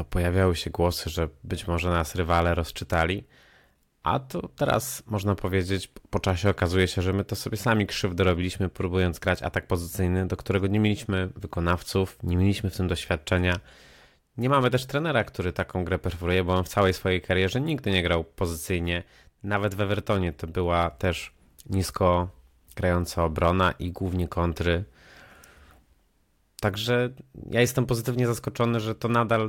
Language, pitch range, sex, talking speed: Polish, 90-105 Hz, male, 155 wpm